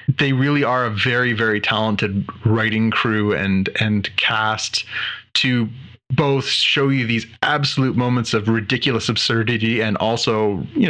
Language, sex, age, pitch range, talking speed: English, male, 20-39, 110-140 Hz, 140 wpm